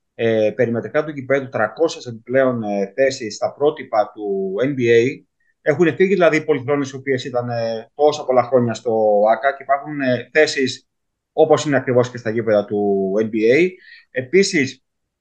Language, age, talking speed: Greek, 30-49, 140 wpm